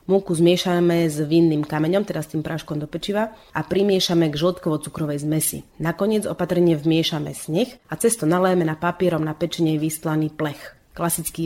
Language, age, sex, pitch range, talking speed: Slovak, 30-49, female, 155-185 Hz, 155 wpm